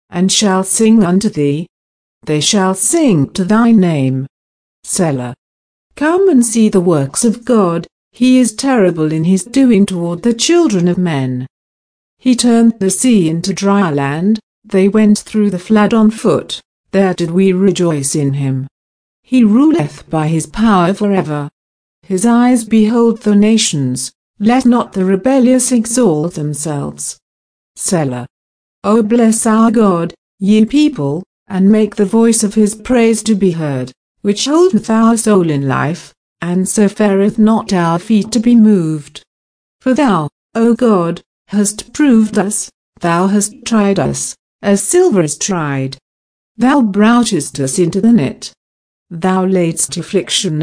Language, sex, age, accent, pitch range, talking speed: English, female, 60-79, British, 155-225 Hz, 145 wpm